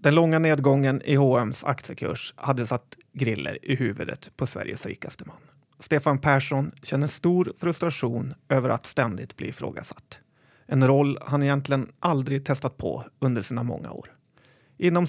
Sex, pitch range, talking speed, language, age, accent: male, 130-150 Hz, 145 wpm, Swedish, 30-49, native